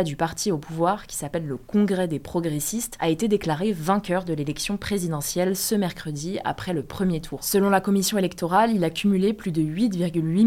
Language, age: French, 20-39